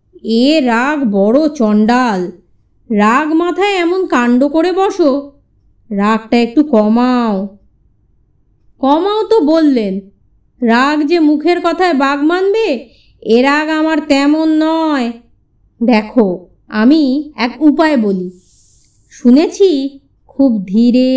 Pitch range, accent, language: 220-310 Hz, native, Bengali